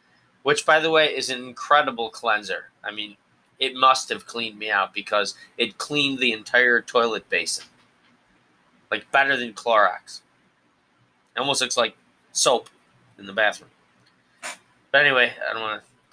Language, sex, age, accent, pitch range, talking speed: English, male, 20-39, American, 105-130 Hz, 155 wpm